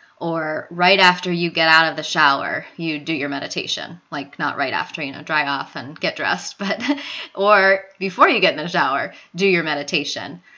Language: English